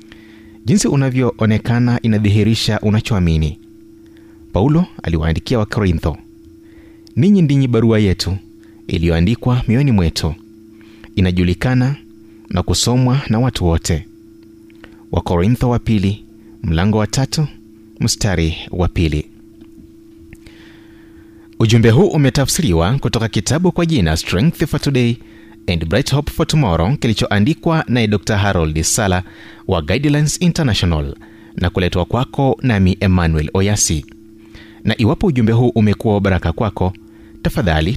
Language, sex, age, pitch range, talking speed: Swahili, male, 30-49, 95-125 Hz, 105 wpm